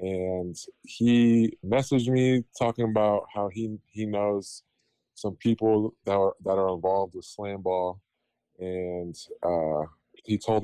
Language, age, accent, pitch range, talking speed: English, 20-39, American, 90-110 Hz, 130 wpm